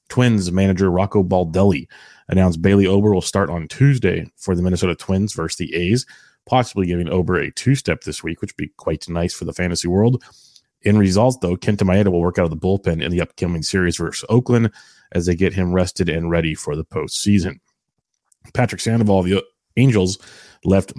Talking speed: 185 wpm